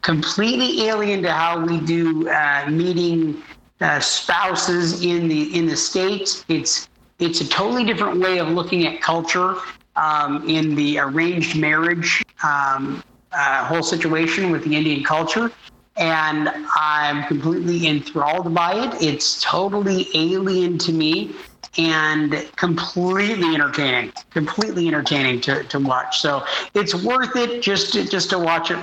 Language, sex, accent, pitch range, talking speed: English, male, American, 150-180 Hz, 140 wpm